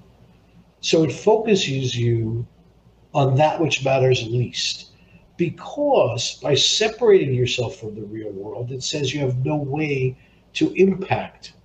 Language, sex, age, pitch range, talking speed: English, male, 50-69, 115-160 Hz, 130 wpm